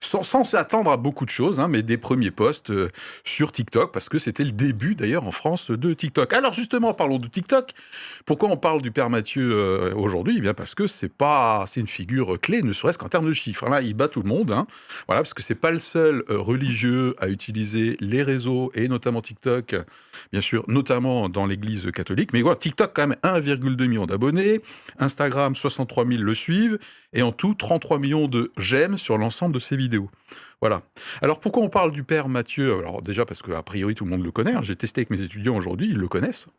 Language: French